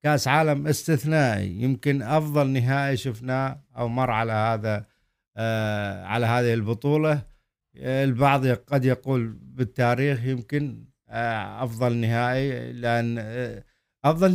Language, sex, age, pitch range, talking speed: Arabic, male, 50-69, 115-150 Hz, 110 wpm